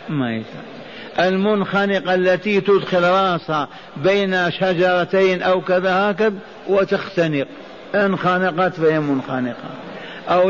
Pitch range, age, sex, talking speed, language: 170-195 Hz, 50-69, male, 85 wpm, Arabic